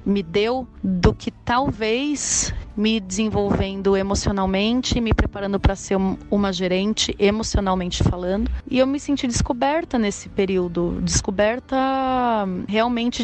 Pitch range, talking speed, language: 190-220 Hz, 115 wpm, English